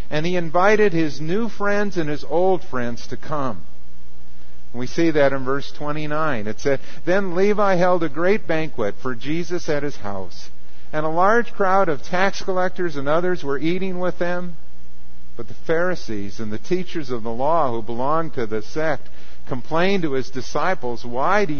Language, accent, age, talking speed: English, American, 50-69, 180 wpm